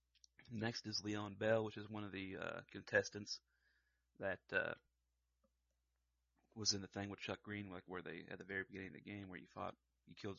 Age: 30-49